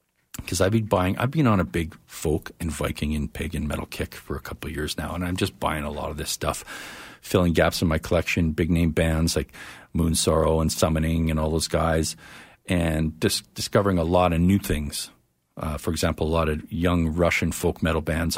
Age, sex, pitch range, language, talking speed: 50-69, male, 80-135 Hz, English, 220 wpm